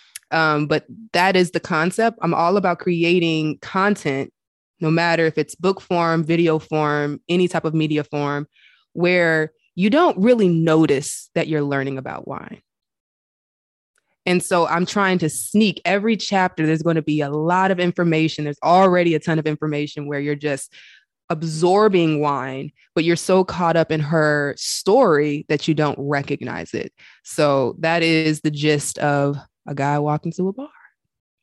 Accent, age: American, 20-39